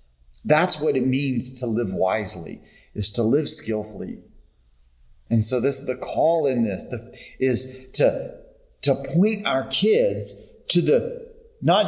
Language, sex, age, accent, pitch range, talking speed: English, male, 30-49, American, 110-180 Hz, 140 wpm